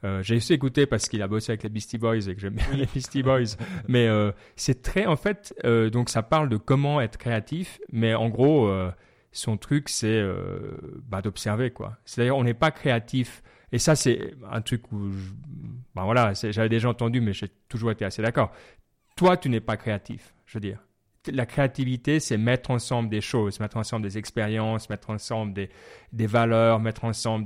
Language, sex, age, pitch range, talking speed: French, male, 30-49, 110-135 Hz, 205 wpm